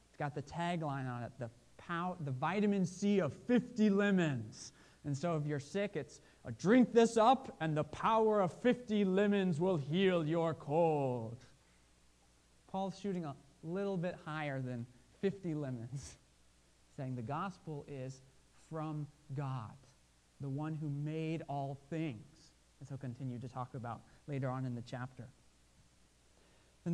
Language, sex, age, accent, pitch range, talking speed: English, male, 30-49, American, 135-180 Hz, 150 wpm